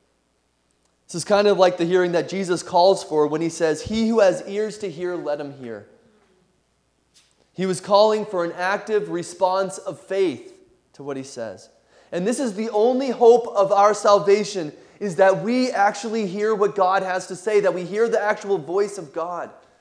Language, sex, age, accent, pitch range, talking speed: English, male, 30-49, American, 165-210 Hz, 190 wpm